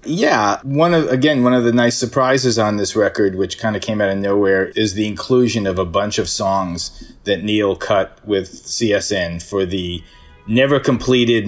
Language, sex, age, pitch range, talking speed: English, male, 30-49, 100-130 Hz, 185 wpm